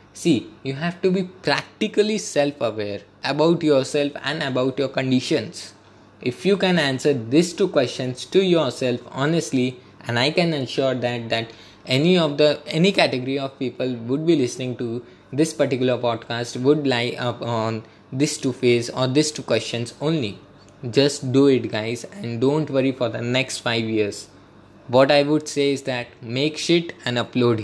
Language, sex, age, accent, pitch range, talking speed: English, male, 20-39, Indian, 120-150 Hz, 165 wpm